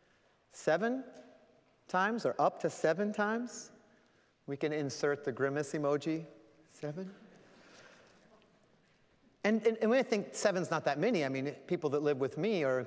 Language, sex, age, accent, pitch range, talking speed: English, male, 30-49, American, 140-205 Hz, 145 wpm